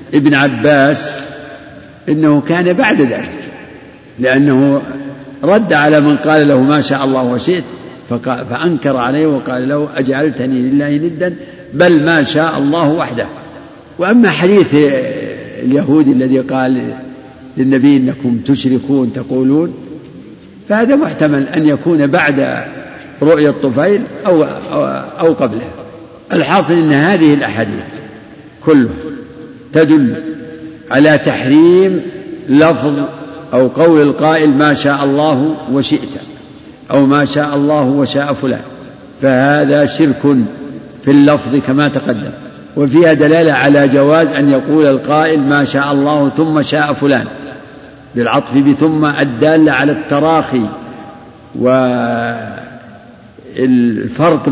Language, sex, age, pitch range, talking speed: Arabic, male, 60-79, 135-155 Hz, 105 wpm